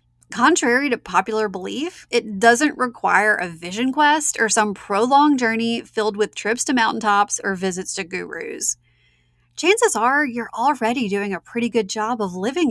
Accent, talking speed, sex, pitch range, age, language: American, 160 wpm, female, 180-250 Hz, 30-49, English